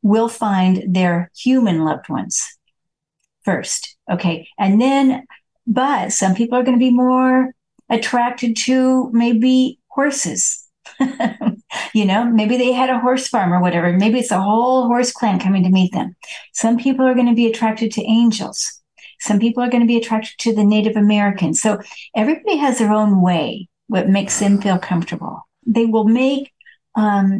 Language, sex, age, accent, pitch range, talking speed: English, female, 50-69, American, 195-250 Hz, 160 wpm